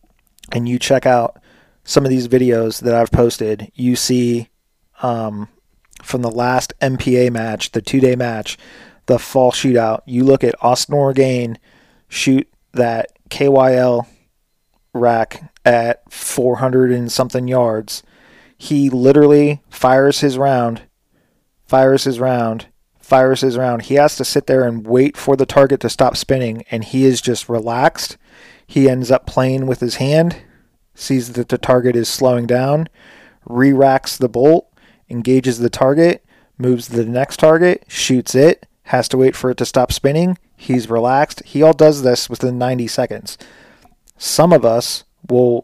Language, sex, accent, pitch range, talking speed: English, male, American, 120-135 Hz, 150 wpm